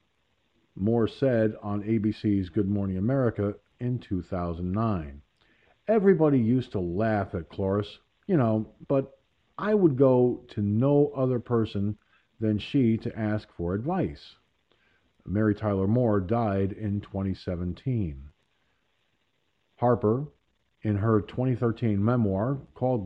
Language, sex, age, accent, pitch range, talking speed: English, male, 50-69, American, 100-135 Hz, 110 wpm